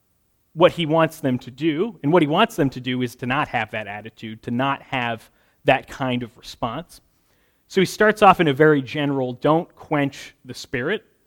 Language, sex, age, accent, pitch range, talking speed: English, male, 30-49, American, 125-160 Hz, 200 wpm